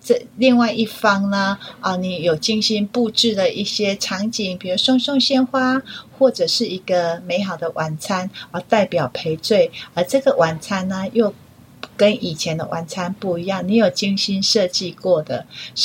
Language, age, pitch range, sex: Chinese, 30-49, 175-230 Hz, female